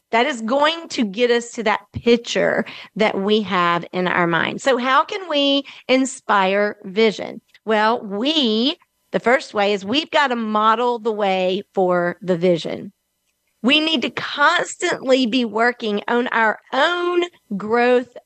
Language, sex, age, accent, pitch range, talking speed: English, female, 40-59, American, 195-270 Hz, 150 wpm